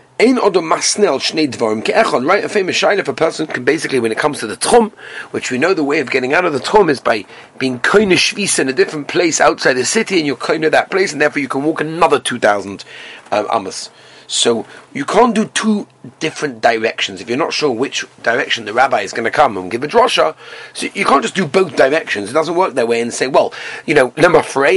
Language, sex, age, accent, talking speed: English, male, 30-49, British, 230 wpm